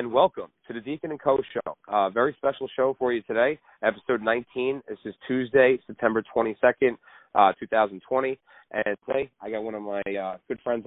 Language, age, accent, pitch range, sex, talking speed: English, 30-49, American, 110-135 Hz, male, 180 wpm